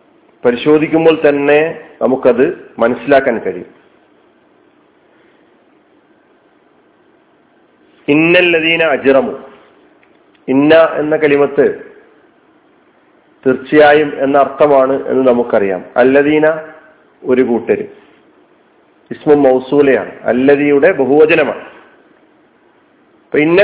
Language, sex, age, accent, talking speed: Malayalam, male, 40-59, native, 60 wpm